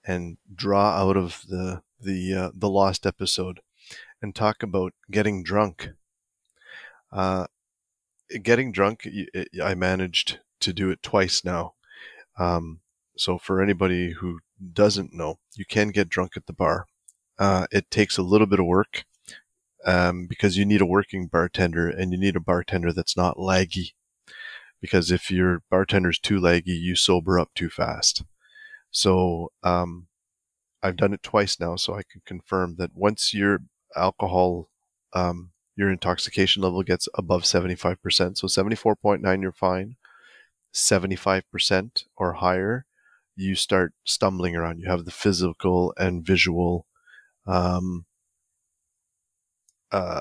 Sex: male